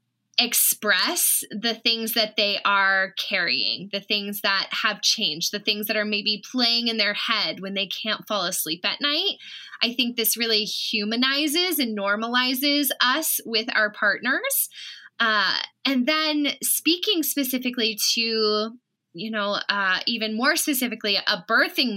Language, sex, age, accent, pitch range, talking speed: English, female, 10-29, American, 210-270 Hz, 145 wpm